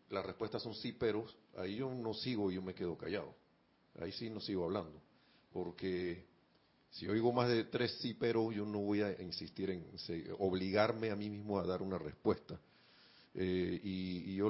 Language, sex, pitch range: Spanish, male, 90-115 Hz